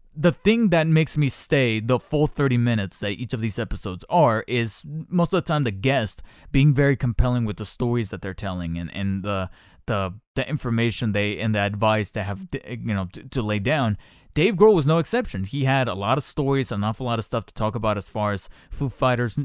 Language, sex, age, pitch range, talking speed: English, male, 20-39, 105-135 Hz, 230 wpm